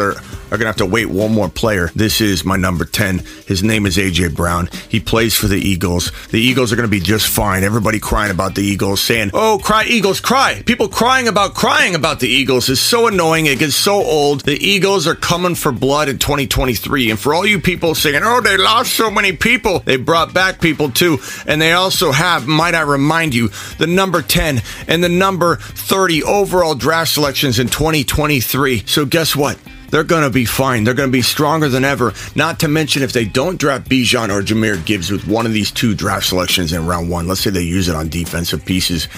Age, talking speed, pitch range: 40-59, 220 wpm, 100-150 Hz